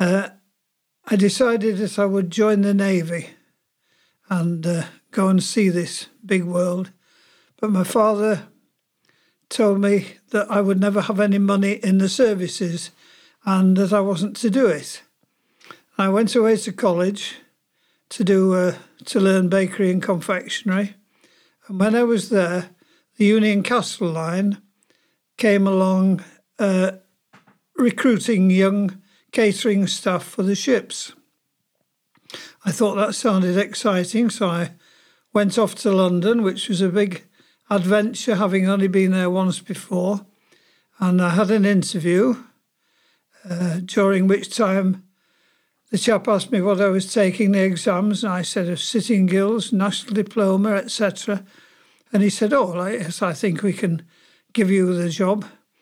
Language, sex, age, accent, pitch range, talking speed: English, male, 50-69, British, 185-215 Hz, 145 wpm